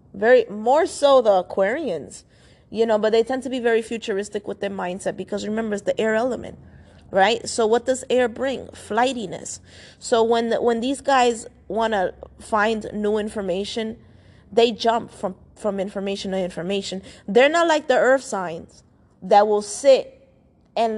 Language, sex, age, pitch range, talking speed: English, female, 20-39, 195-235 Hz, 165 wpm